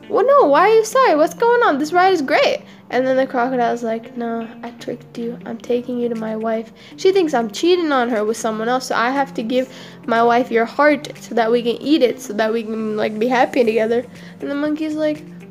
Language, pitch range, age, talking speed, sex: English, 235-320 Hz, 10-29, 250 wpm, female